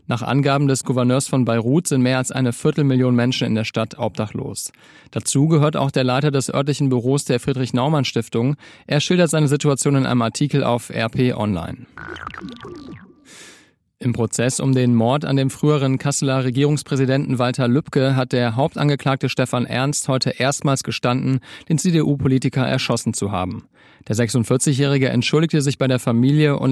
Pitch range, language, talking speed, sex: 120-140 Hz, German, 155 wpm, male